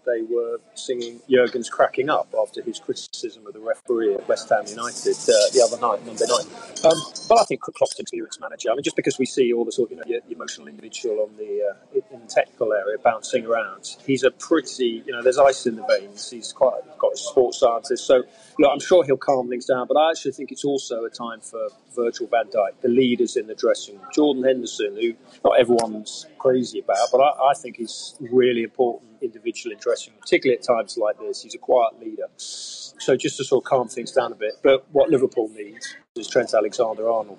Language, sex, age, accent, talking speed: English, male, 30-49, British, 225 wpm